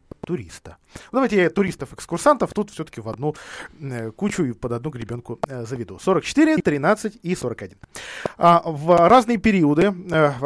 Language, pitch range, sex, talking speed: Russian, 135-180 Hz, male, 125 wpm